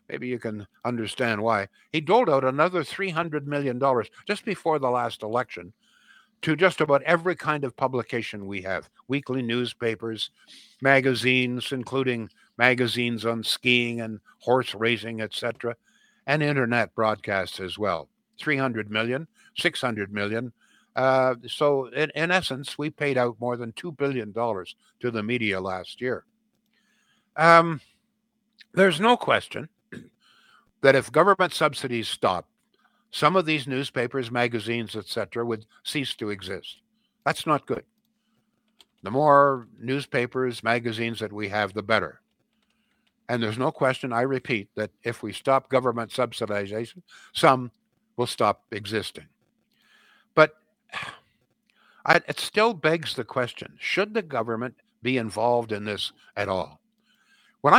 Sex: male